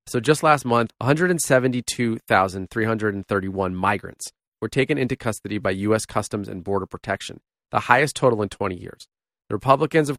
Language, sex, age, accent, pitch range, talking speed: English, male, 30-49, American, 105-130 Hz, 145 wpm